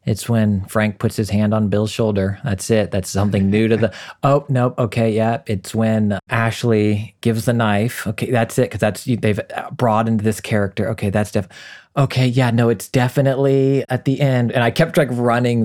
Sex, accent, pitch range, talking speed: male, American, 95-115 Hz, 195 wpm